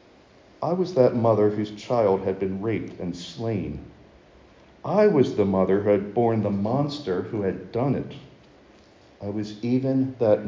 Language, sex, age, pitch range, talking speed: English, male, 50-69, 100-125 Hz, 160 wpm